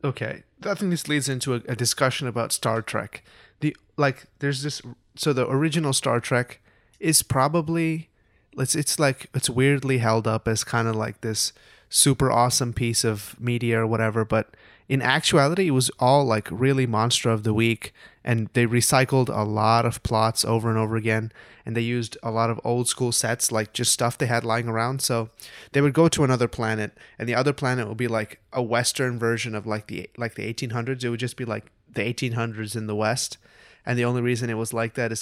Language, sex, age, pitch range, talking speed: English, male, 20-39, 115-130 Hz, 210 wpm